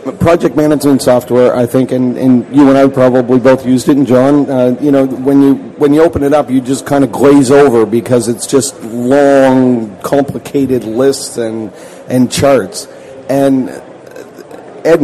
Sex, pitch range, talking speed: male, 125-145 Hz, 170 wpm